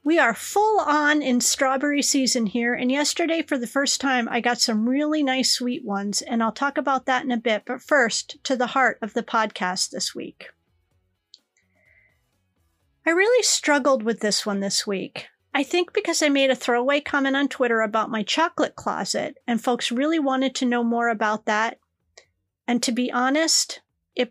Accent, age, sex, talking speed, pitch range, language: American, 40-59, female, 185 wpm, 225-290 Hz, English